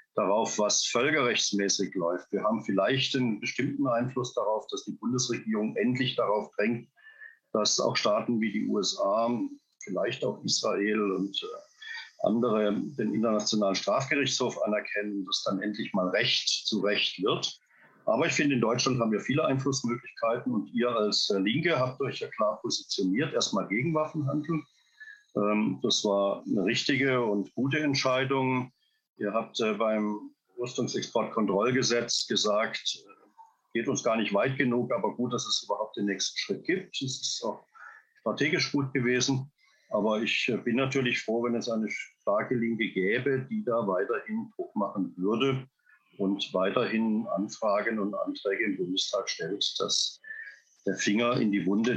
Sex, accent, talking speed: male, German, 145 wpm